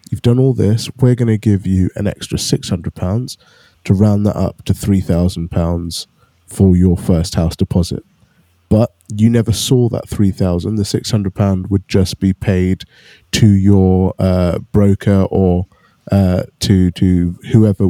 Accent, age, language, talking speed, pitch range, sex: British, 20-39, English, 150 wpm, 95-115 Hz, male